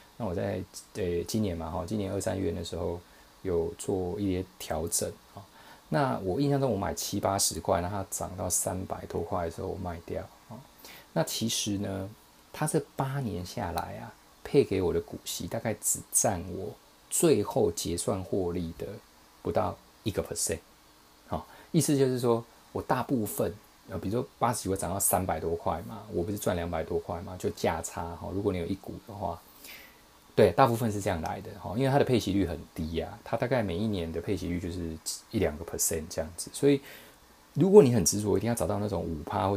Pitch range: 85-110 Hz